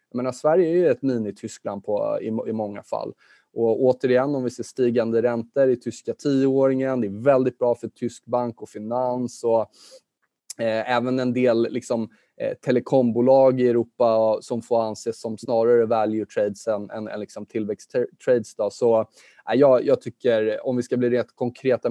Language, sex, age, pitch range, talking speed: Swedish, male, 20-39, 110-130 Hz, 175 wpm